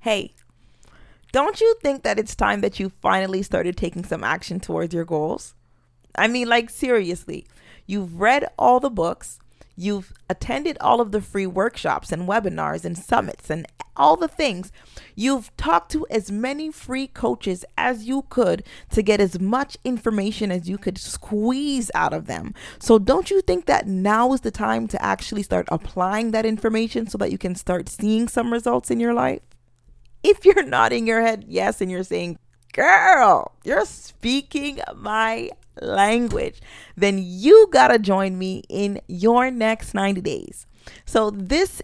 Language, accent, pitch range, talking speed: English, American, 190-245 Hz, 165 wpm